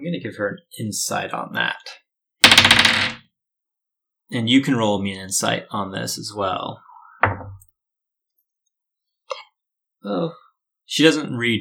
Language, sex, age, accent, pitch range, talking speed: English, male, 30-49, American, 95-140 Hz, 125 wpm